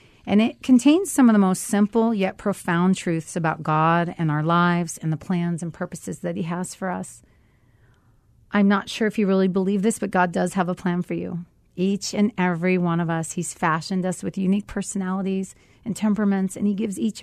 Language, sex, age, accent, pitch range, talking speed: English, female, 40-59, American, 160-200 Hz, 210 wpm